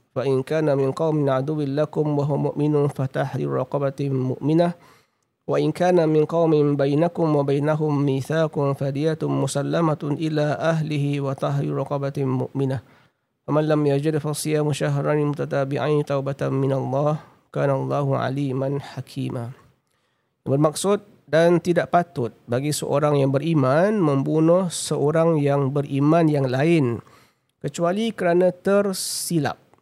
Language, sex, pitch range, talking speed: Malay, male, 135-160 Hz, 110 wpm